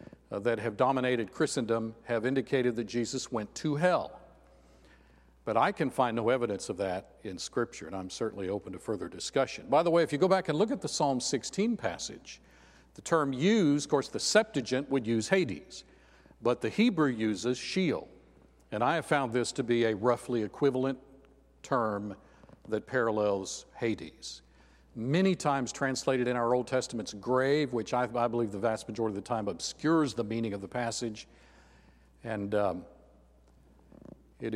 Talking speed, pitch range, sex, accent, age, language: 170 wpm, 100-135 Hz, male, American, 50-69, English